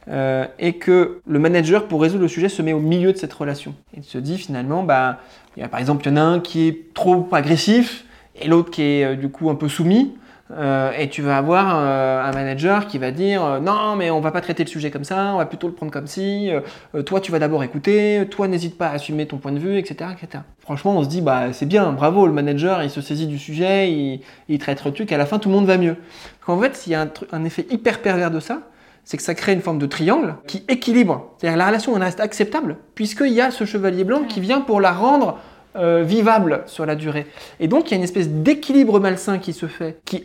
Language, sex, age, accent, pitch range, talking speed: French, male, 20-39, French, 155-205 Hz, 270 wpm